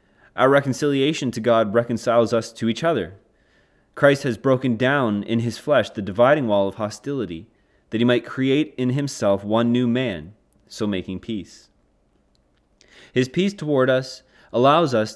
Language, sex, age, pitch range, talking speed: English, male, 20-39, 100-125 Hz, 155 wpm